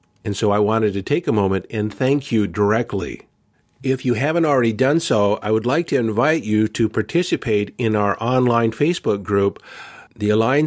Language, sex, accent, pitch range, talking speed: English, male, American, 105-125 Hz, 185 wpm